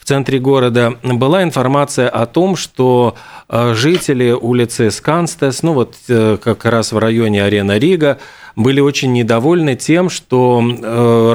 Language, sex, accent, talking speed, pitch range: Russian, male, native, 130 wpm, 120-150 Hz